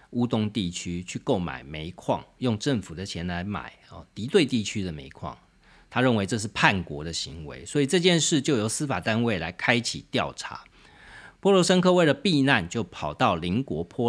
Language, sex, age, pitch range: Chinese, male, 40-59, 90-135 Hz